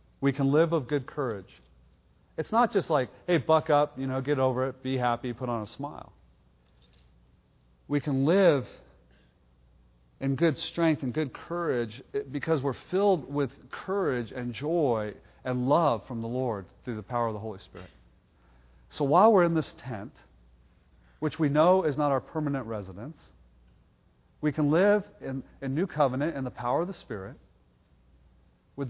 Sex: male